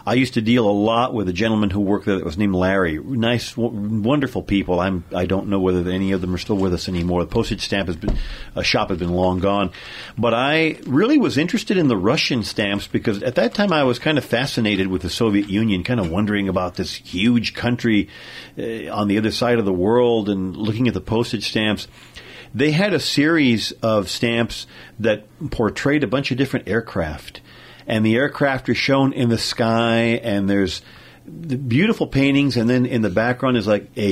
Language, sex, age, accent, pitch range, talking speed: English, male, 50-69, American, 100-125 Hz, 210 wpm